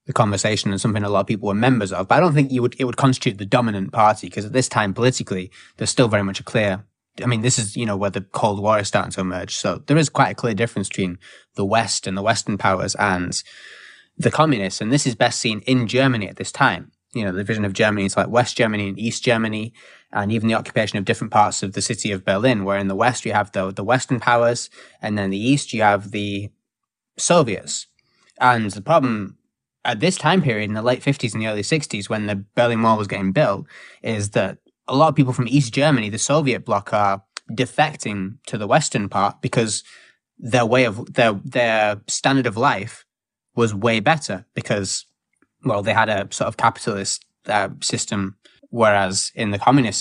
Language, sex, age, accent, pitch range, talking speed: English, male, 20-39, British, 100-125 Hz, 220 wpm